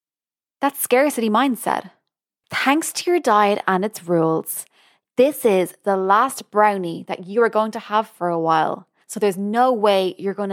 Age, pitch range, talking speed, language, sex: 20-39, 190-235 Hz, 170 wpm, English, female